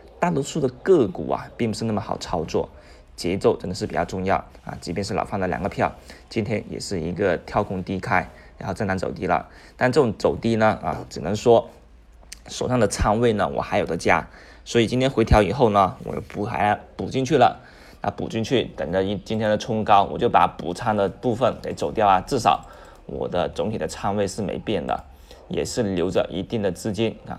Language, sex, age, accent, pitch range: Chinese, male, 20-39, native, 90-120 Hz